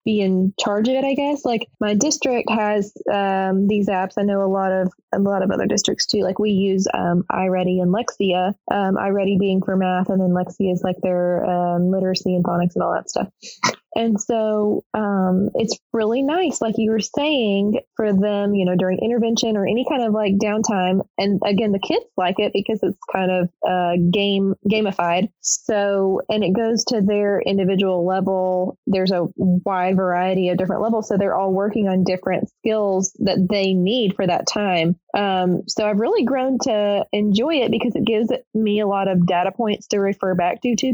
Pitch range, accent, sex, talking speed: 185-215 Hz, American, female, 200 wpm